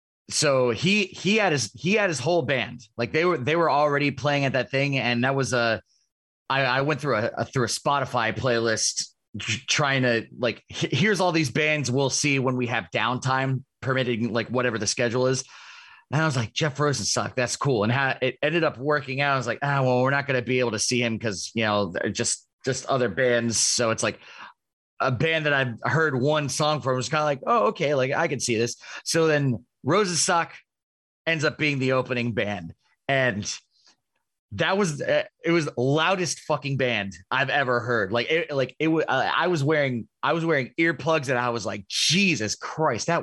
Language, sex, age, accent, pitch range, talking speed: English, male, 30-49, American, 120-155 Hz, 220 wpm